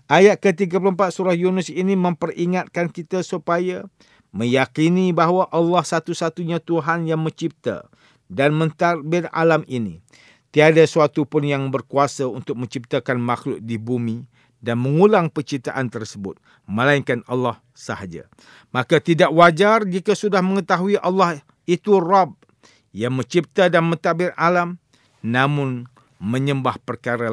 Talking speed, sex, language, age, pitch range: 115 wpm, male, English, 50-69, 120-170 Hz